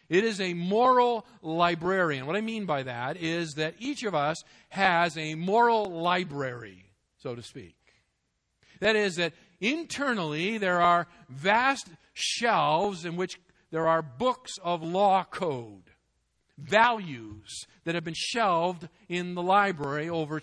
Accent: American